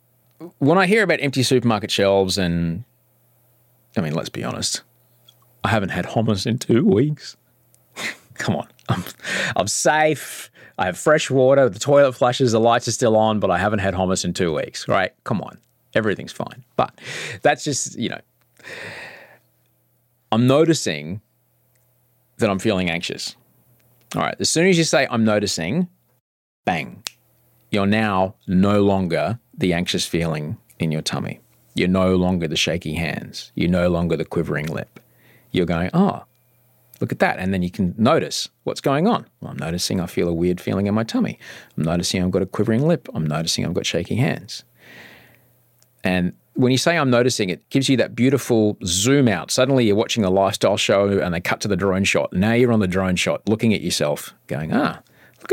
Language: English